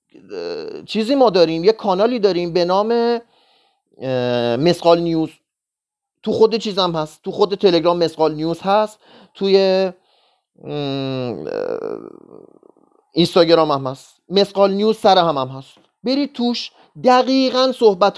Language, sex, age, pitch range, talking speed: Persian, male, 30-49, 175-250 Hz, 110 wpm